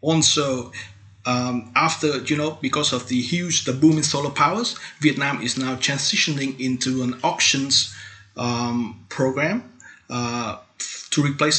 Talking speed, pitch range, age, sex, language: 135 wpm, 120-150 Hz, 30-49, male, English